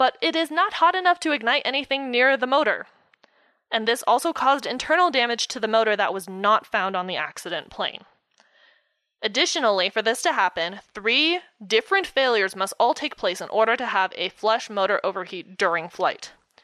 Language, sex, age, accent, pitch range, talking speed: English, female, 20-39, American, 205-285 Hz, 185 wpm